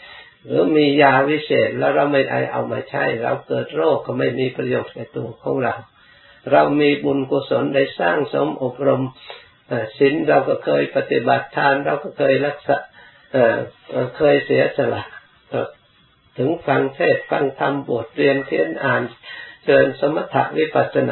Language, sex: Thai, male